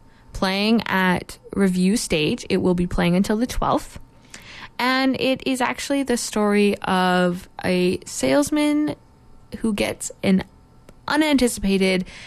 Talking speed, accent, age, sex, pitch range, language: 115 wpm, American, 20-39, female, 185-230 Hz, English